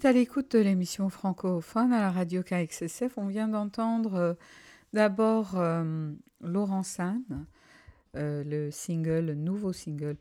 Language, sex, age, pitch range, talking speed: English, female, 50-69, 160-205 Hz, 135 wpm